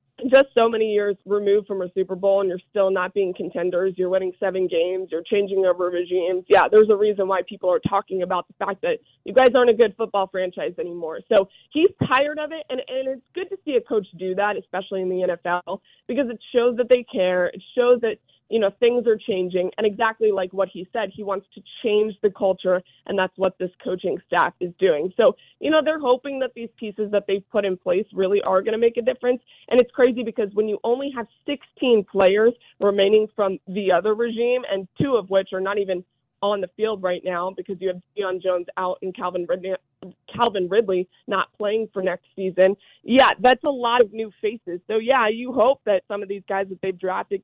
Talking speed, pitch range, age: 225 wpm, 185-240 Hz, 20-39